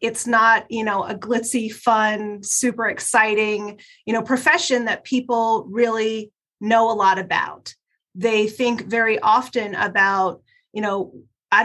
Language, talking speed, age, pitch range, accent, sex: English, 140 wpm, 30-49, 210-245 Hz, American, female